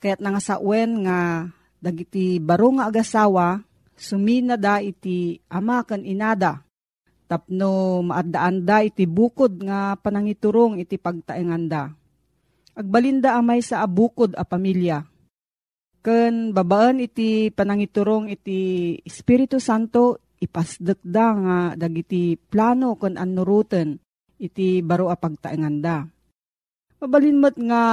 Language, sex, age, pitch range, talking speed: Filipino, female, 40-59, 175-225 Hz, 110 wpm